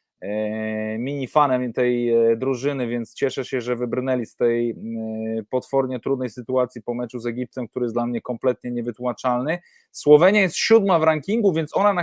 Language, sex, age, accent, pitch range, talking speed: English, male, 20-39, Polish, 130-160 Hz, 160 wpm